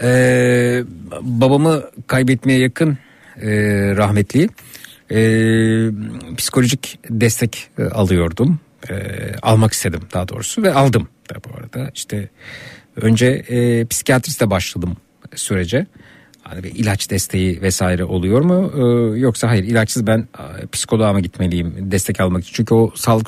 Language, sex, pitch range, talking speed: Turkish, male, 110-135 Hz, 115 wpm